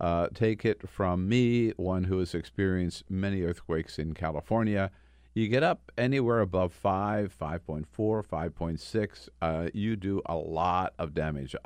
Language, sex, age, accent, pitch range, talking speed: English, male, 50-69, American, 80-105 Hz, 145 wpm